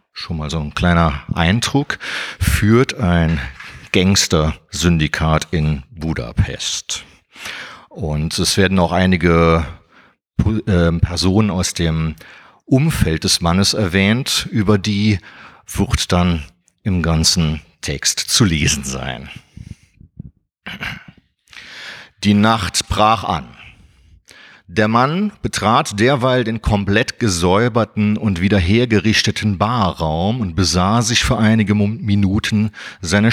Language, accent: German, German